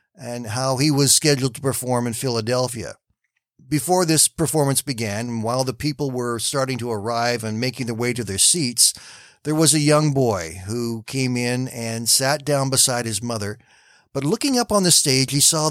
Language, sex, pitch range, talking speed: English, male, 115-150 Hz, 185 wpm